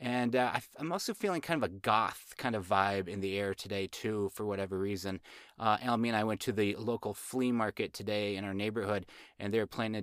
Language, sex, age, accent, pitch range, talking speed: English, male, 30-49, American, 105-145 Hz, 240 wpm